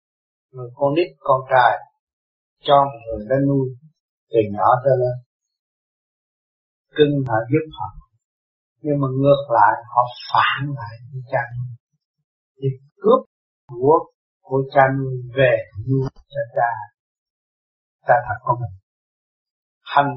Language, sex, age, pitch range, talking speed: Vietnamese, male, 60-79, 125-180 Hz, 115 wpm